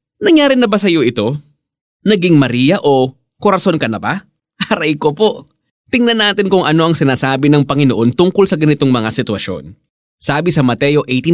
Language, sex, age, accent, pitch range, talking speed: Filipino, male, 20-39, native, 120-190 Hz, 165 wpm